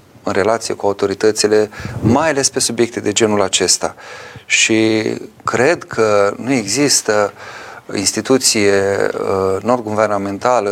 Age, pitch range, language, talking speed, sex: 30-49, 100-120 Hz, Romanian, 100 wpm, male